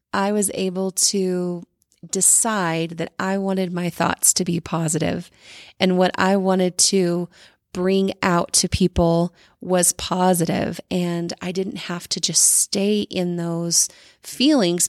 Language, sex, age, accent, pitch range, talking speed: English, female, 30-49, American, 175-200 Hz, 140 wpm